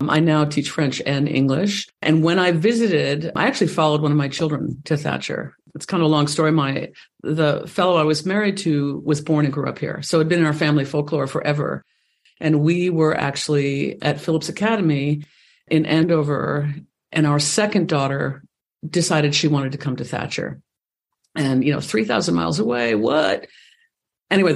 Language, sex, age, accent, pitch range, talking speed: English, female, 50-69, American, 145-170 Hz, 185 wpm